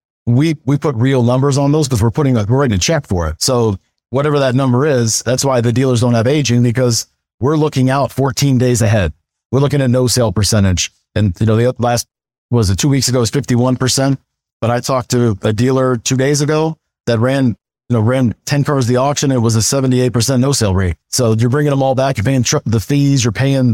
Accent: American